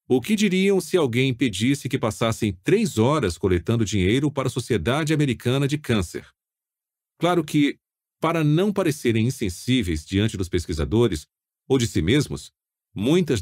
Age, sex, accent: 40-59, male, Brazilian